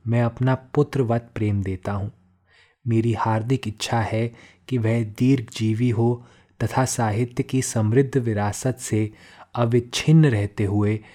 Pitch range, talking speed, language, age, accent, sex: 105-125 Hz, 125 wpm, Hindi, 20-39, native, male